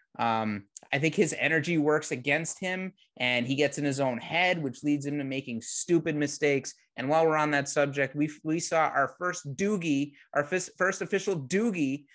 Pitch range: 140-175 Hz